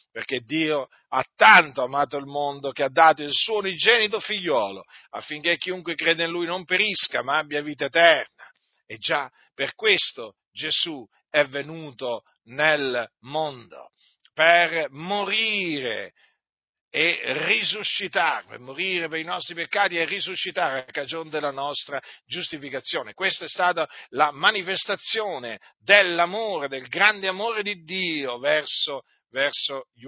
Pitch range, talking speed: 130-170 Hz, 130 wpm